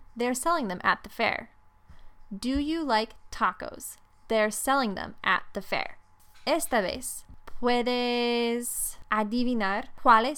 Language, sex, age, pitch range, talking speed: Spanish, female, 10-29, 185-235 Hz, 120 wpm